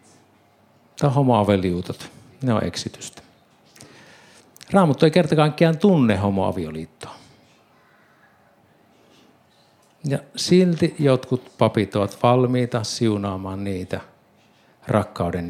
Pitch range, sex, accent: 100-140 Hz, male, native